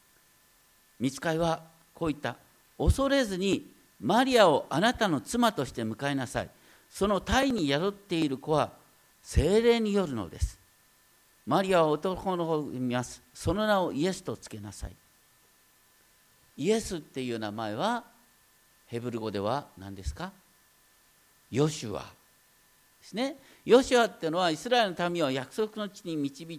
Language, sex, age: Japanese, male, 50-69